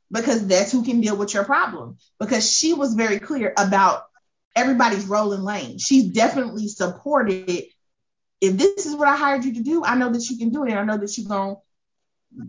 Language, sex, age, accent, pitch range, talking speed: English, female, 20-39, American, 200-255 Hz, 205 wpm